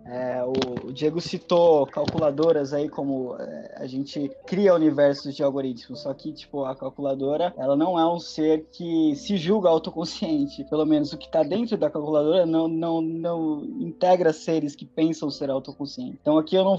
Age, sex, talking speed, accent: 20-39, male, 175 wpm, Brazilian